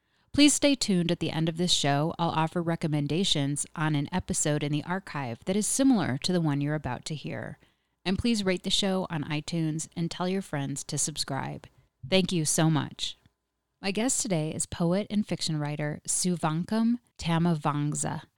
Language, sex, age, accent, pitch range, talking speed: English, female, 30-49, American, 155-185 Hz, 180 wpm